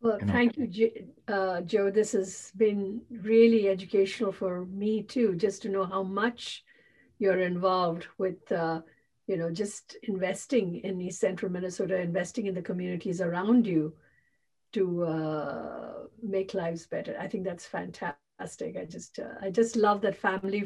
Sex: female